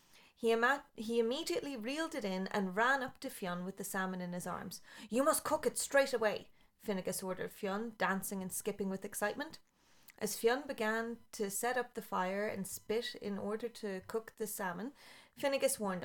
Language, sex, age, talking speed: English, female, 30-49, 185 wpm